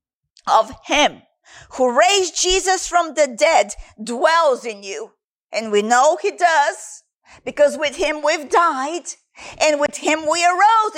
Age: 40-59